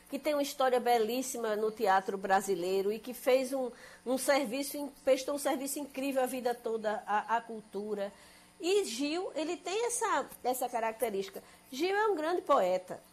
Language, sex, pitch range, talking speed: Portuguese, female, 210-285 Hz, 160 wpm